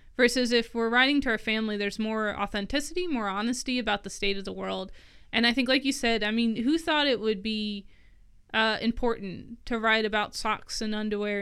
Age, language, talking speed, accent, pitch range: 20-39, English, 205 wpm, American, 200-240 Hz